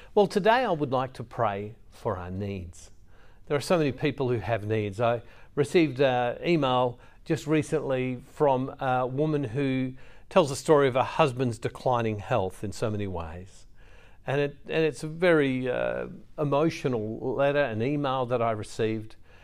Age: 50-69